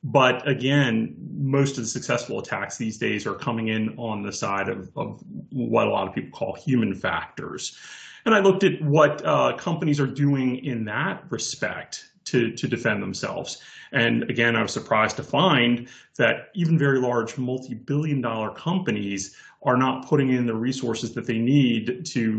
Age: 30-49